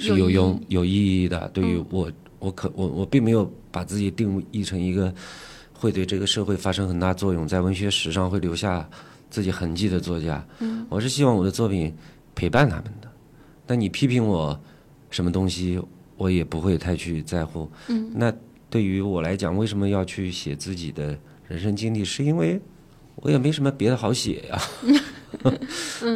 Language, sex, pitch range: Chinese, male, 85-115 Hz